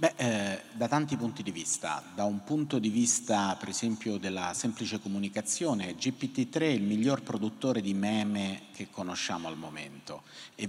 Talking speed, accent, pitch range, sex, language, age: 165 wpm, native, 100-125 Hz, male, Italian, 40-59